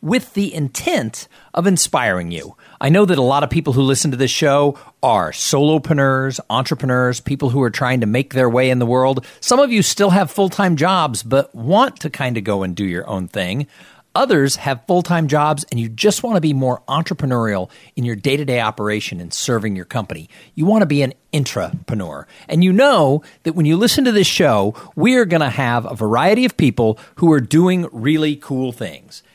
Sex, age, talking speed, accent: male, 50-69, 205 wpm, American